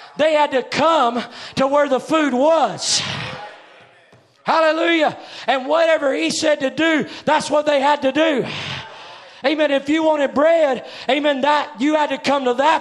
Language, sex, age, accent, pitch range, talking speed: English, male, 40-59, American, 235-310 Hz, 165 wpm